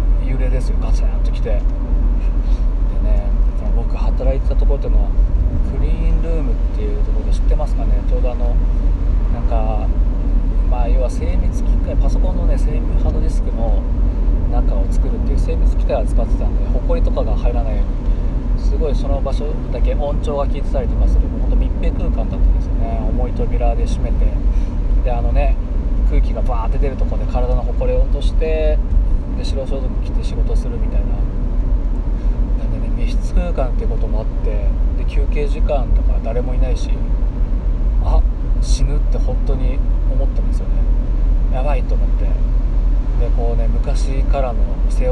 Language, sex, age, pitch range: Japanese, male, 20-39, 65-80 Hz